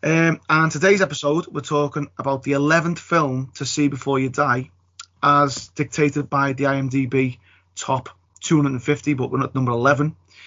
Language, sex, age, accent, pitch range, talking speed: English, male, 30-49, British, 125-155 Hz, 145 wpm